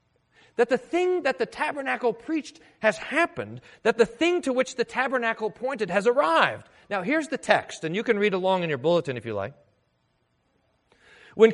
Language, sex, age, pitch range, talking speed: English, male, 40-59, 175-240 Hz, 180 wpm